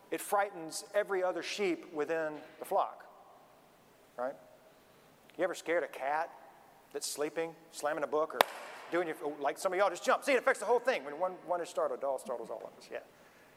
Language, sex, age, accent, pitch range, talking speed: English, male, 40-59, American, 155-210 Hz, 205 wpm